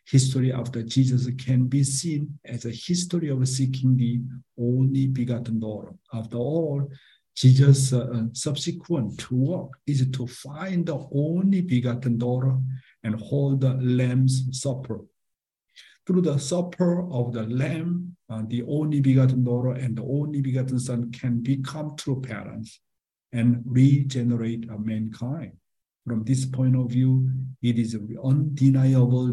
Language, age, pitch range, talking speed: English, 50-69, 120-140 Hz, 135 wpm